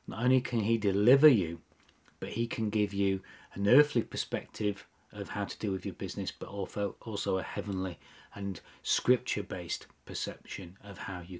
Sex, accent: male, British